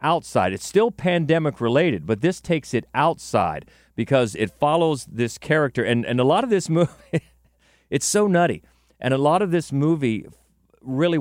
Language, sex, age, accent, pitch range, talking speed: English, male, 40-59, American, 105-145 Hz, 170 wpm